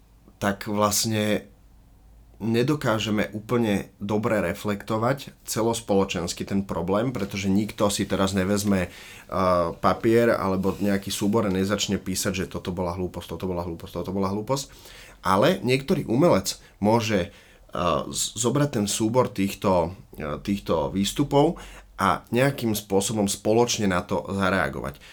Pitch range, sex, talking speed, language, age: 95-110 Hz, male, 115 wpm, Slovak, 30-49